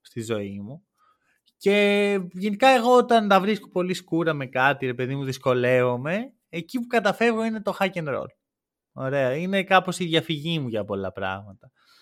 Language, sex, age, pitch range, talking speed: Greek, male, 20-39, 150-205 Hz, 165 wpm